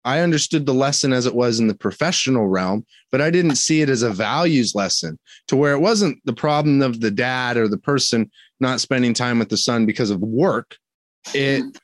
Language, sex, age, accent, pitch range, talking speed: English, male, 30-49, American, 110-135 Hz, 215 wpm